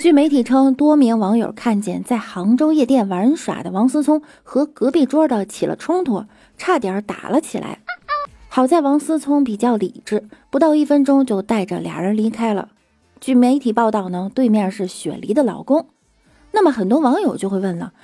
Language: Chinese